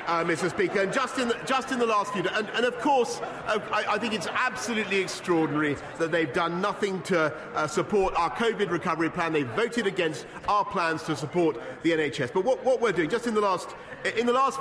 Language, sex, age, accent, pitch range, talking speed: English, male, 40-59, British, 185-245 Hz, 230 wpm